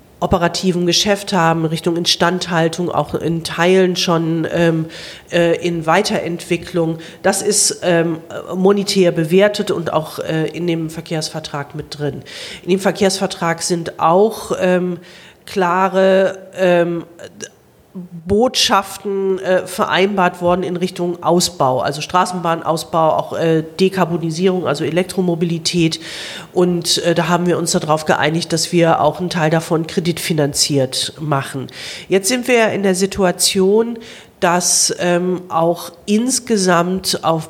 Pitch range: 165-190 Hz